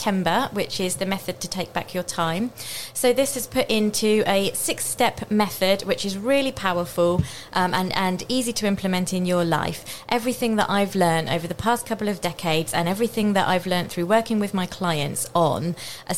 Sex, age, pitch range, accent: female, 20-39, 165-200 Hz, British